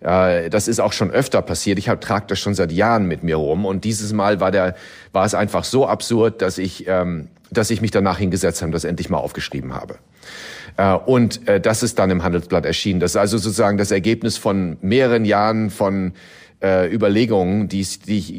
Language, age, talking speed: German, 40-59, 195 wpm